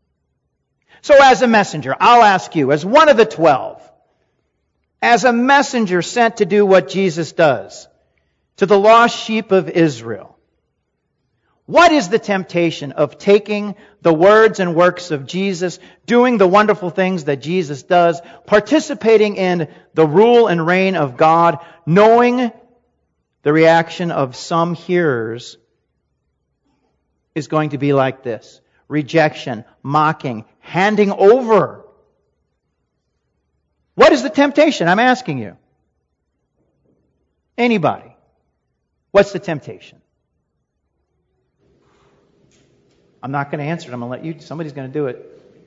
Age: 50-69